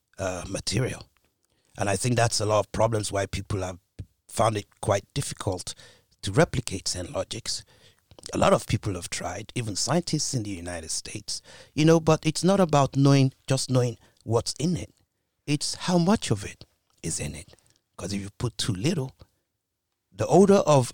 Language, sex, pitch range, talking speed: English, male, 100-150 Hz, 180 wpm